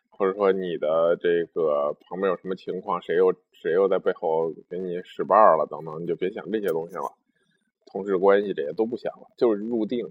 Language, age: Chinese, 20-39